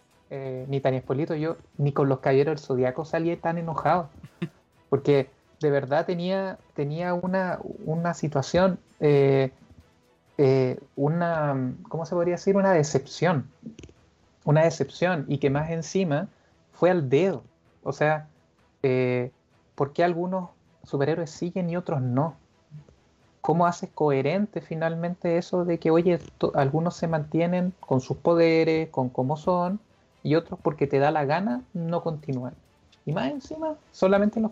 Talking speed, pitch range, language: 145 wpm, 135-170 Hz, Spanish